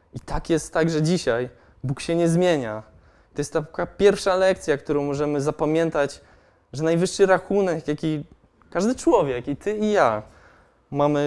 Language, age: Polish, 20-39